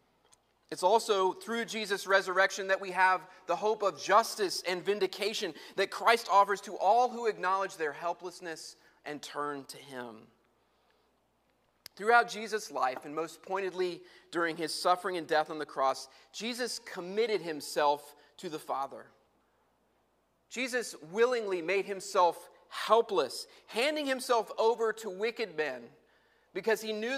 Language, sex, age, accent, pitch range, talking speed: English, male, 30-49, American, 175-225 Hz, 135 wpm